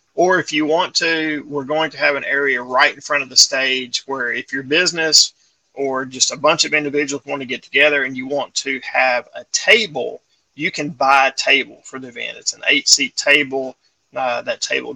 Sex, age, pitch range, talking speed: male, 30-49, 130-160 Hz, 215 wpm